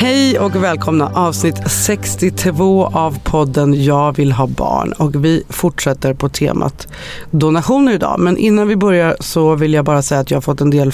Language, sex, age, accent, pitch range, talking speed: English, female, 40-59, Swedish, 145-180 Hz, 180 wpm